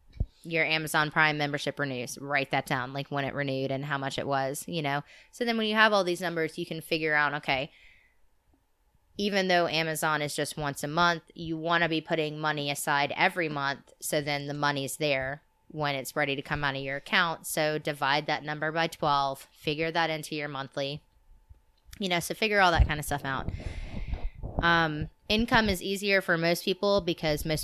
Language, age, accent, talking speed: English, 20-39, American, 200 wpm